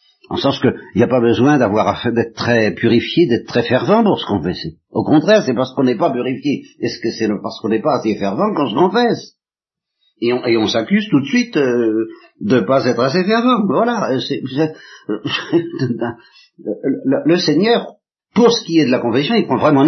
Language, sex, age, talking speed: French, male, 50-69, 210 wpm